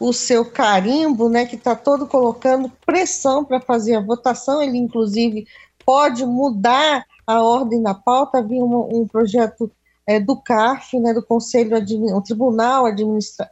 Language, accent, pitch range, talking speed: Portuguese, Brazilian, 225-275 Hz, 155 wpm